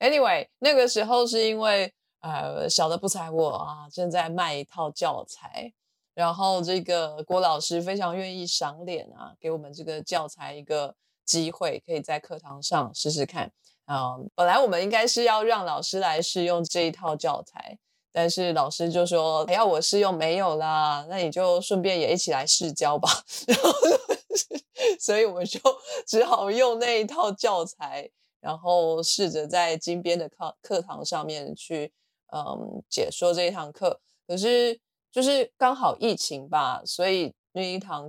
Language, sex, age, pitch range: Chinese, female, 20-39, 155-205 Hz